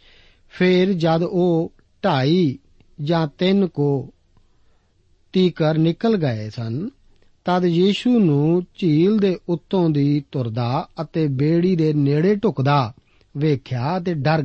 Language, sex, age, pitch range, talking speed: Punjabi, male, 50-69, 135-180 Hz, 110 wpm